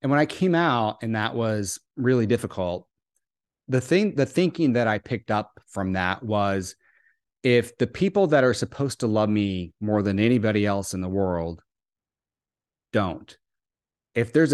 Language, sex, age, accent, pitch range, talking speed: English, male, 40-59, American, 105-130 Hz, 165 wpm